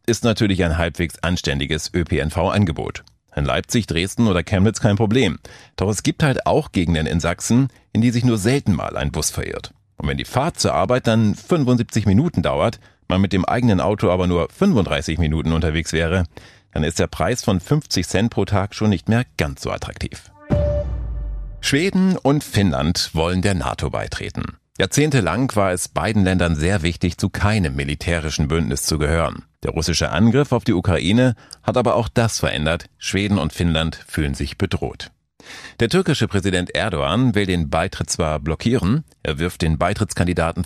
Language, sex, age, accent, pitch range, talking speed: German, male, 40-59, German, 80-110 Hz, 170 wpm